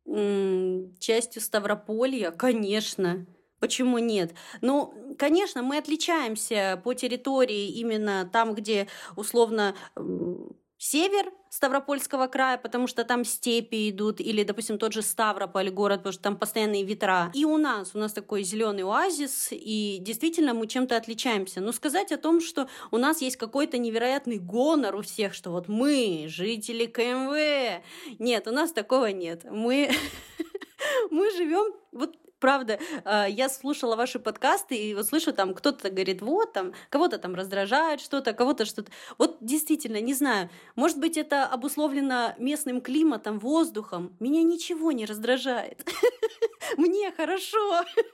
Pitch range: 215-300 Hz